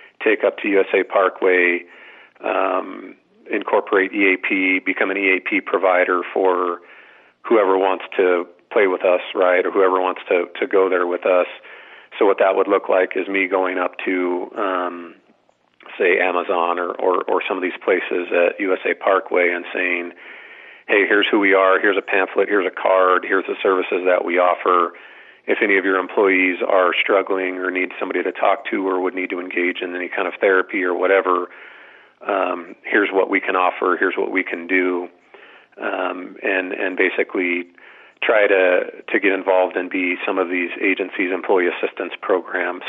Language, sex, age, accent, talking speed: English, male, 40-59, American, 175 wpm